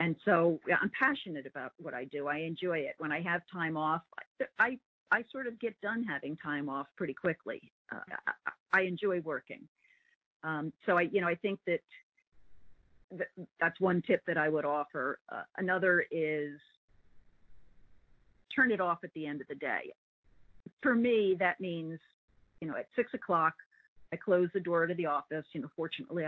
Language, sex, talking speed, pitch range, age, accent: English, female, 180 wpm, 150-190 Hz, 50-69, American